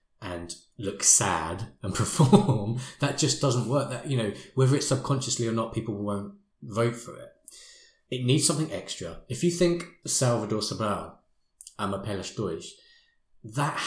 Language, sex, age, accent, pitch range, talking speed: English, male, 20-39, British, 100-130 Hz, 145 wpm